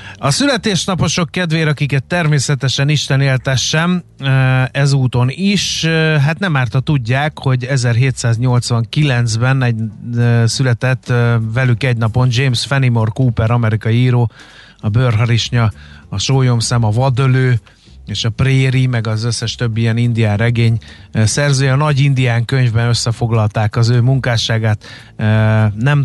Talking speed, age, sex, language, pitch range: 120 wpm, 30-49, male, Hungarian, 115-140 Hz